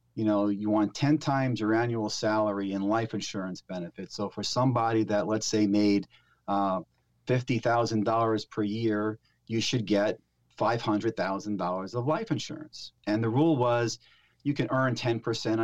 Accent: American